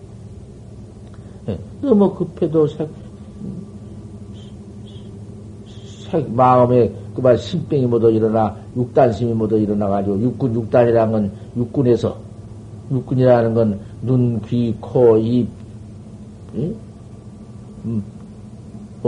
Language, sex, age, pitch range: Korean, male, 50-69, 105-120 Hz